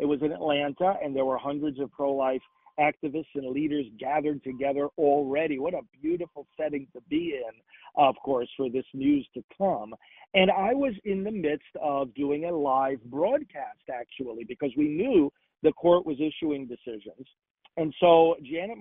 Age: 50-69